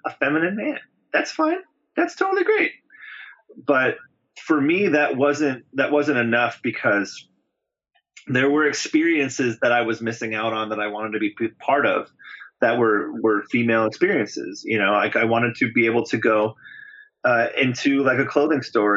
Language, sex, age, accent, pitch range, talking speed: English, male, 30-49, American, 115-185 Hz, 170 wpm